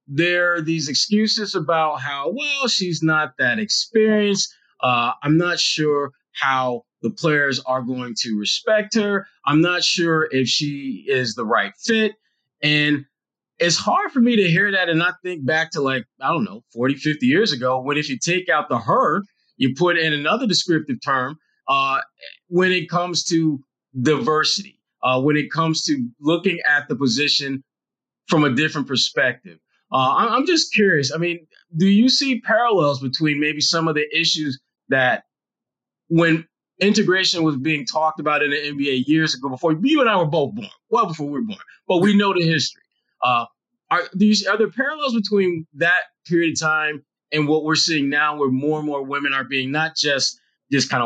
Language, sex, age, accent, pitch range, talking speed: English, male, 30-49, American, 145-200 Hz, 185 wpm